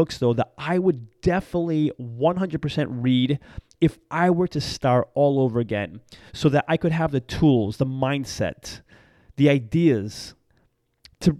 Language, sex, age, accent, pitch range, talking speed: English, male, 30-49, American, 125-155 Hz, 145 wpm